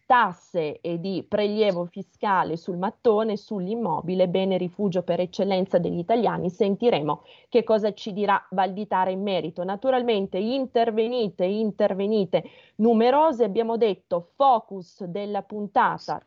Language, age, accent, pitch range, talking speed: Italian, 30-49, native, 180-230 Hz, 115 wpm